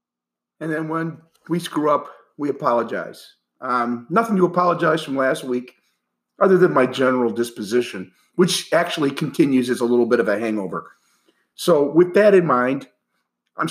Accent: American